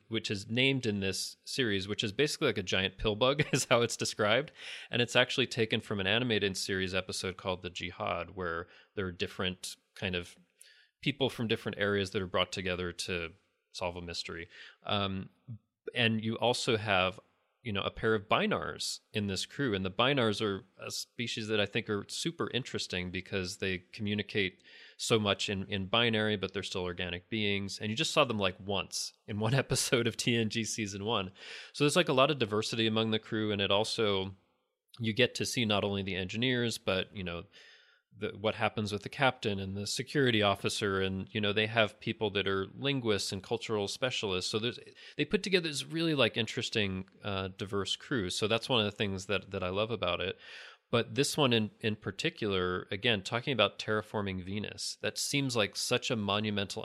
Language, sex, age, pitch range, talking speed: English, male, 30-49, 95-115 Hz, 200 wpm